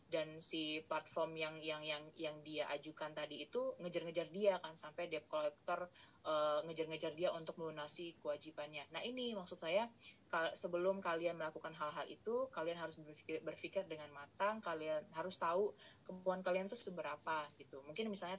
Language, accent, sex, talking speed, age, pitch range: Indonesian, native, female, 155 wpm, 20-39, 155-180 Hz